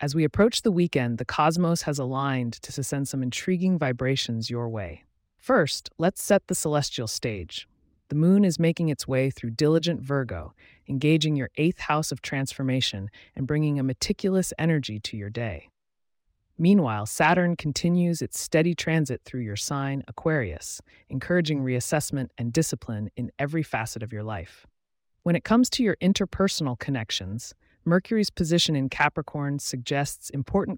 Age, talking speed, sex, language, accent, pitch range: 30-49, 150 wpm, female, English, American, 115-160 Hz